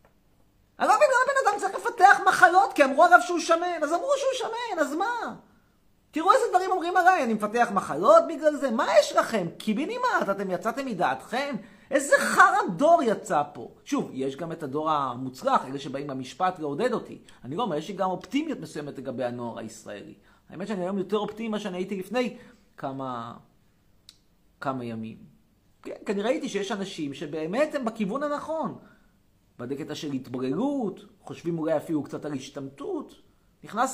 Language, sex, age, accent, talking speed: Hebrew, male, 30-49, native, 165 wpm